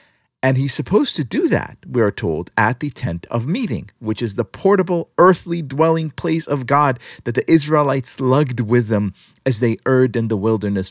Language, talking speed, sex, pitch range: English, 195 wpm, male, 110-165 Hz